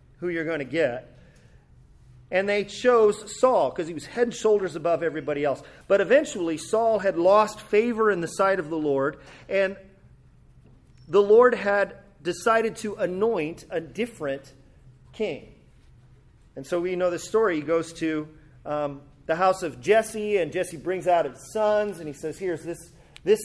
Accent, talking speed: American, 170 wpm